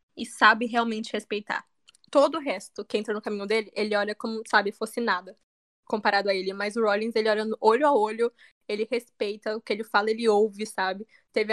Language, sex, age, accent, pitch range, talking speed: Portuguese, female, 10-29, Brazilian, 210-245 Hz, 205 wpm